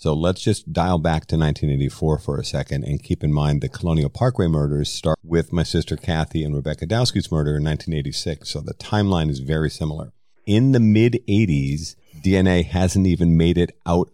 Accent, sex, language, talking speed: American, male, English, 190 wpm